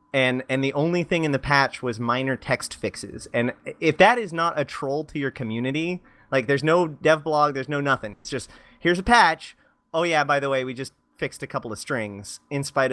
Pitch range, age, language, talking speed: 120-145 Hz, 30-49, English, 225 wpm